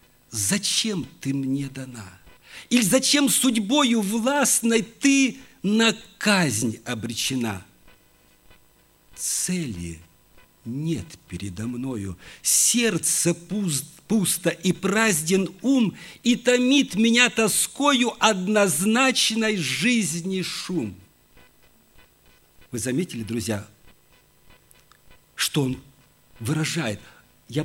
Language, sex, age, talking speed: Russian, male, 50-69, 75 wpm